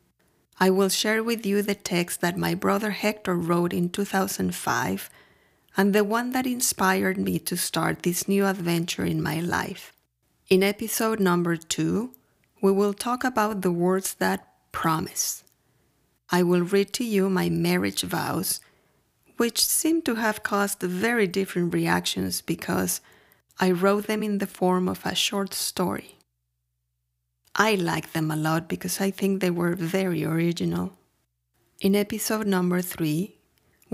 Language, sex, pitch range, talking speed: Spanish, female, 170-205 Hz, 145 wpm